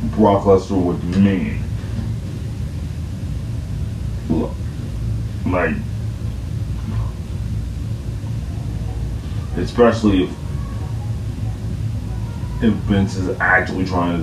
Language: English